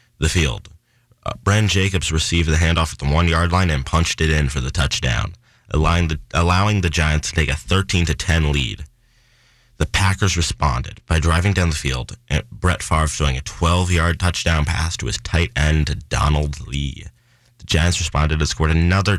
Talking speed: 180 wpm